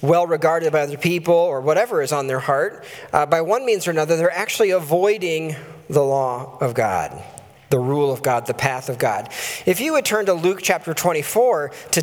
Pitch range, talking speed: 145-175 Hz, 200 wpm